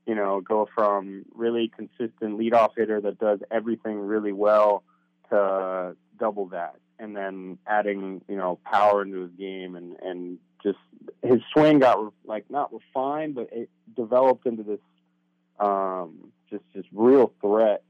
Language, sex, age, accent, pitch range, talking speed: English, male, 30-49, American, 95-110 Hz, 150 wpm